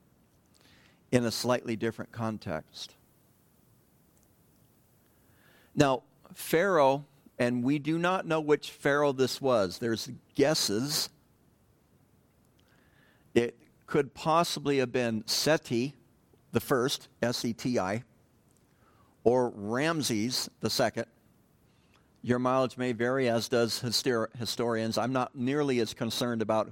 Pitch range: 115-140 Hz